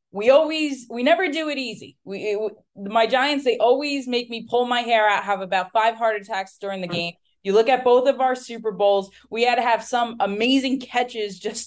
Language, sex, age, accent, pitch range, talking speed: English, female, 20-39, American, 160-225 Hz, 220 wpm